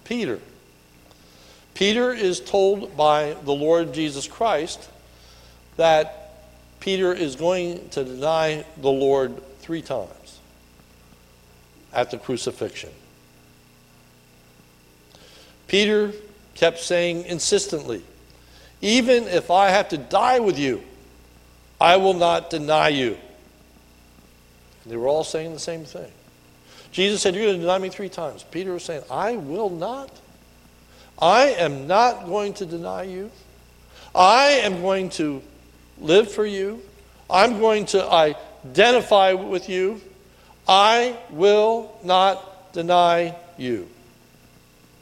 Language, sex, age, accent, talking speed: English, male, 60-79, American, 115 wpm